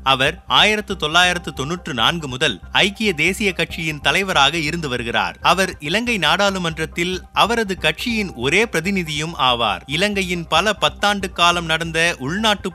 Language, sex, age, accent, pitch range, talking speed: Tamil, male, 30-49, native, 155-185 Hz, 120 wpm